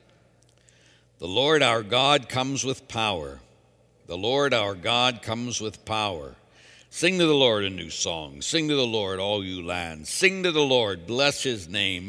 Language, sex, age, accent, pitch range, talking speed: English, male, 60-79, American, 100-140 Hz, 175 wpm